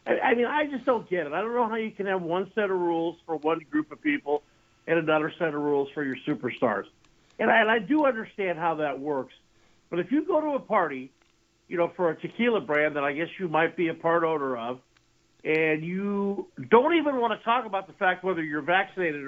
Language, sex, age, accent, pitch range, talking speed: English, male, 50-69, American, 150-200 Hz, 235 wpm